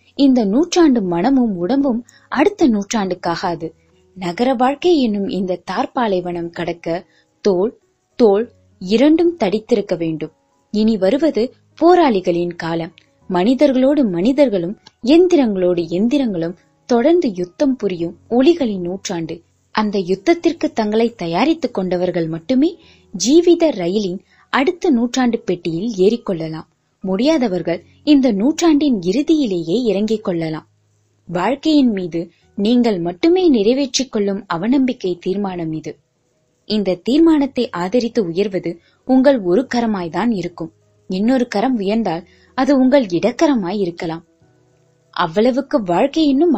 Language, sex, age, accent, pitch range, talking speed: Tamil, female, 20-39, native, 175-265 Hz, 95 wpm